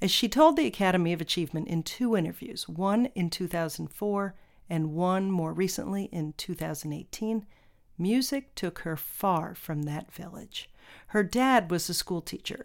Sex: female